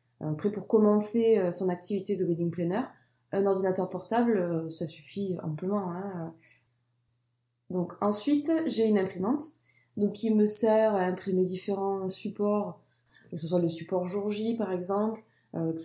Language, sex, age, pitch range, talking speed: French, female, 20-39, 175-210 Hz, 145 wpm